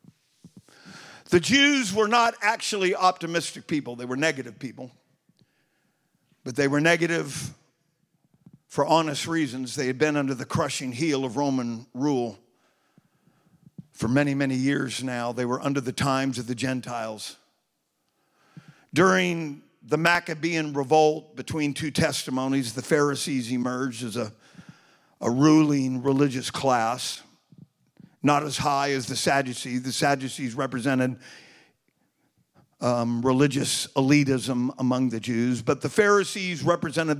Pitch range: 130-160 Hz